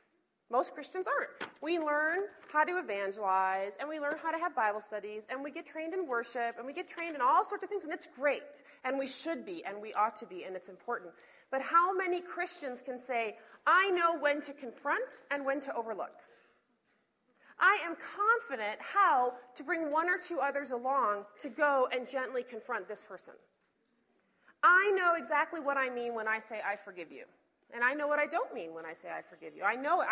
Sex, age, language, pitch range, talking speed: female, 30-49, English, 240-335 Hz, 215 wpm